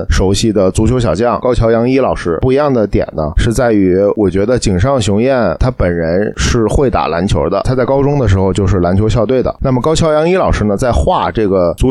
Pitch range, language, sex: 95-125 Hz, Chinese, male